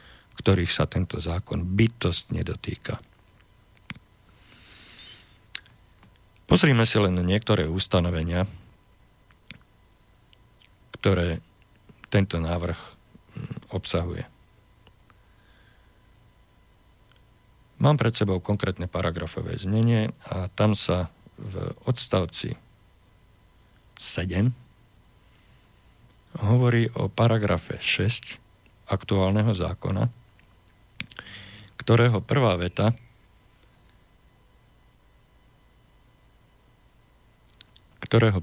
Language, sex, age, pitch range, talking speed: Slovak, male, 50-69, 95-115 Hz, 60 wpm